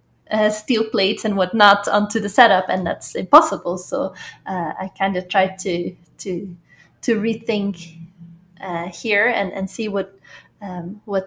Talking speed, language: 155 wpm, English